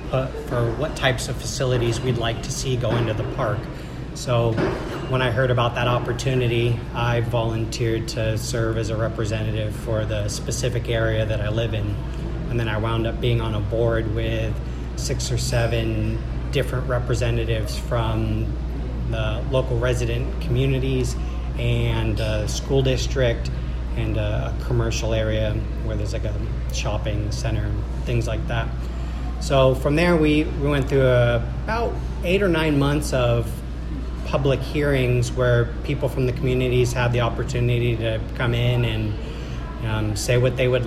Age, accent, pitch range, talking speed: 30-49, American, 110-125 Hz, 155 wpm